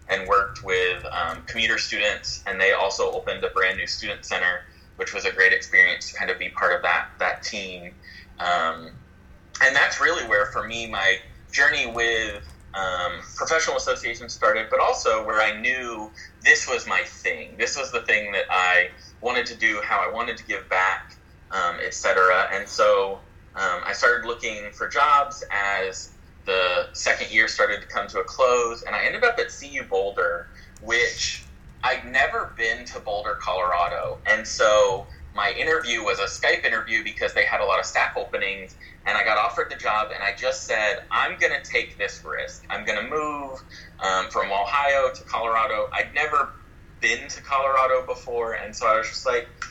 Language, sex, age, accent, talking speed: English, male, 20-39, American, 185 wpm